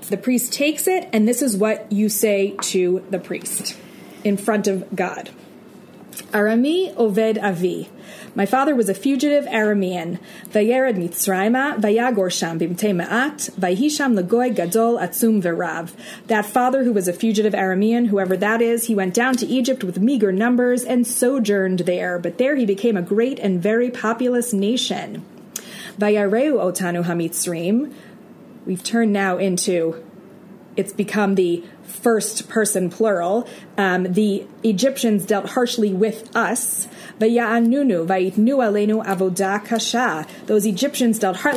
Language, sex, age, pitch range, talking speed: English, female, 30-49, 195-250 Hz, 125 wpm